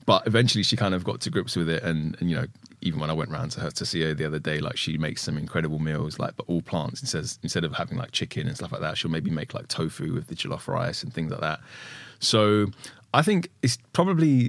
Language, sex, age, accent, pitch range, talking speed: English, male, 20-39, British, 80-110 Hz, 275 wpm